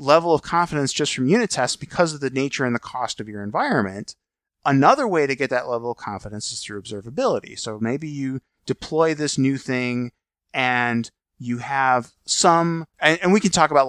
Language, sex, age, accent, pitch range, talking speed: English, male, 20-39, American, 120-155 Hz, 195 wpm